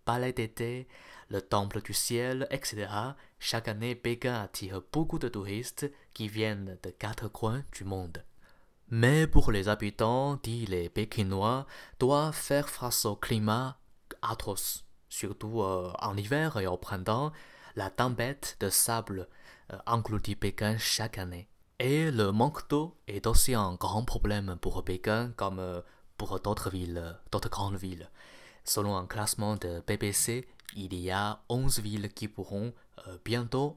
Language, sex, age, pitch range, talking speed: French, male, 20-39, 100-120 Hz, 145 wpm